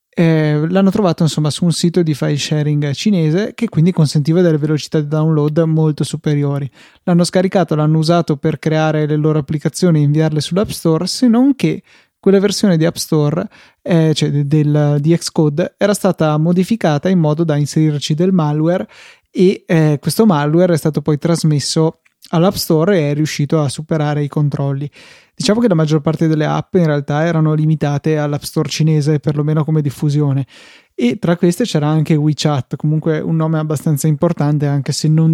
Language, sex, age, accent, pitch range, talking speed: Italian, male, 20-39, native, 150-170 Hz, 175 wpm